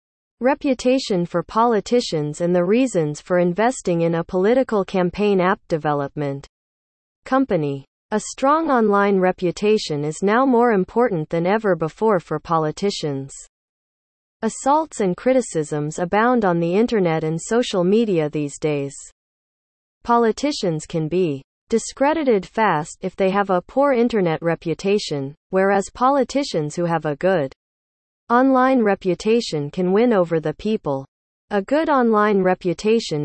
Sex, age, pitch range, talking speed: female, 30-49, 160-225 Hz, 125 wpm